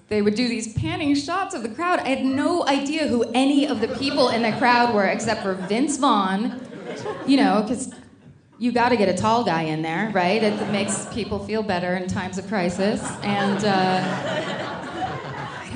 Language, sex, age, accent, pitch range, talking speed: English, female, 30-49, American, 175-240 Hz, 190 wpm